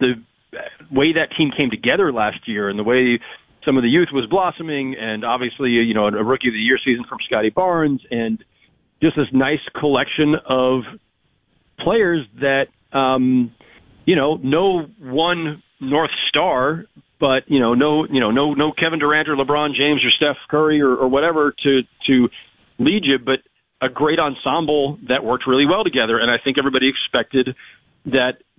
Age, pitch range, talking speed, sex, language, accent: 40-59, 125-150 Hz, 175 wpm, male, English, American